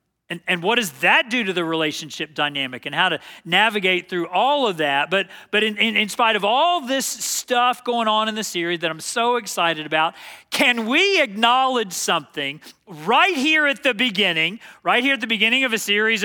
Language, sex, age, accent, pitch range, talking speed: English, male, 40-59, American, 185-260 Hz, 205 wpm